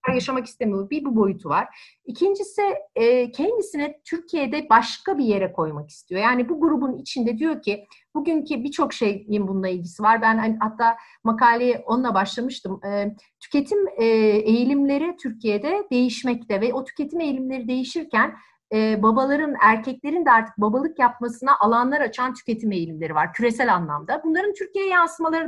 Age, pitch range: 40-59, 215-295 Hz